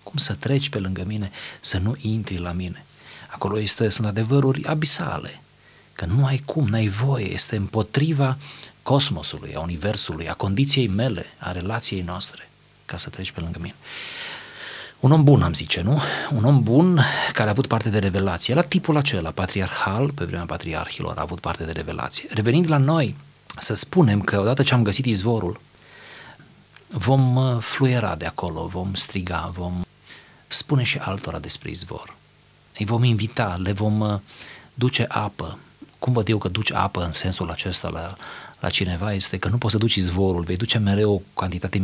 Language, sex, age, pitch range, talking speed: Romanian, male, 40-59, 90-120 Hz, 170 wpm